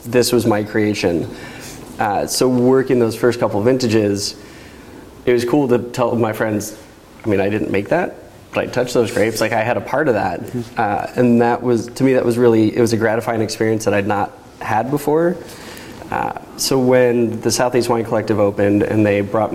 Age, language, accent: 20-39, English, American